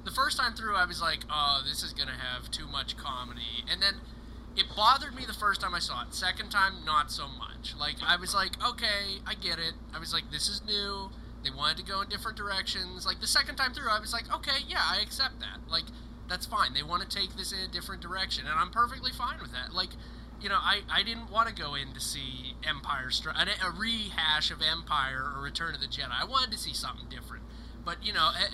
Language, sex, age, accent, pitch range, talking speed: English, male, 20-39, American, 155-225 Hz, 245 wpm